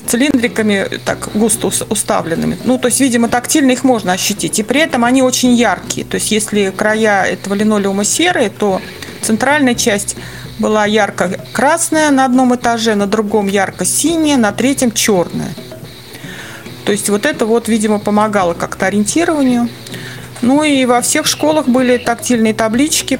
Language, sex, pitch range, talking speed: Russian, female, 200-245 Hz, 150 wpm